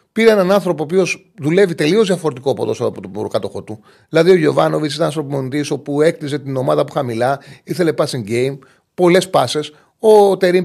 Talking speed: 175 wpm